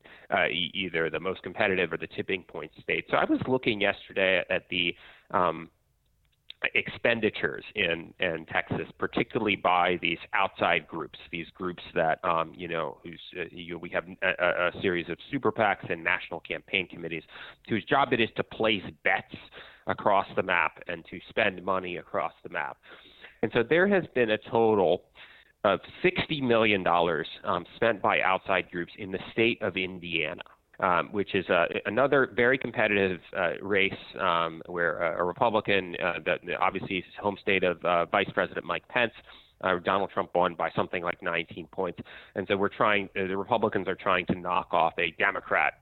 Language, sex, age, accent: English, male, 30-49, American